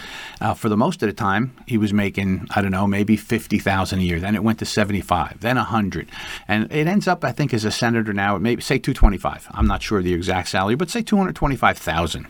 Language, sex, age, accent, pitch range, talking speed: English, male, 50-69, American, 95-125 Hz, 260 wpm